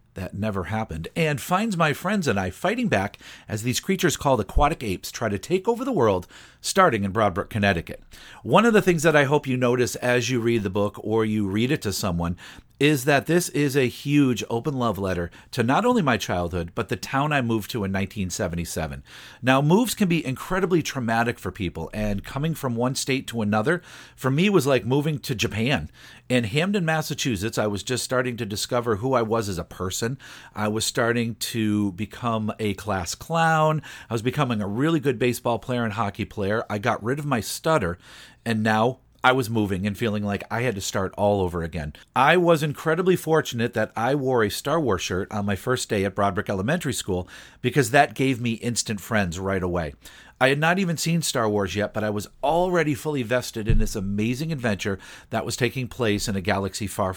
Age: 50-69